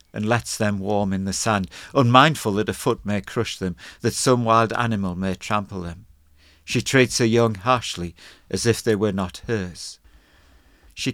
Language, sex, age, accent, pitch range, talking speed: English, male, 50-69, British, 95-125 Hz, 180 wpm